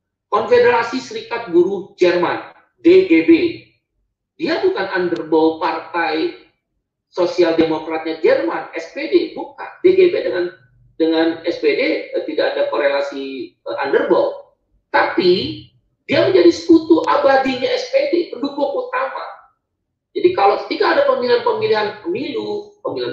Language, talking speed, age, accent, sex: Indonesian, 100 wpm, 40-59, native, male